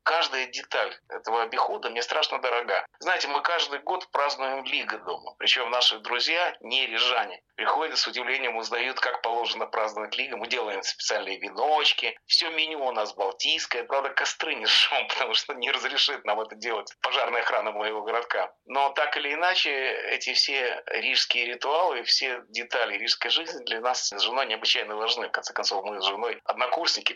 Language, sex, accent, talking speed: Russian, male, native, 170 wpm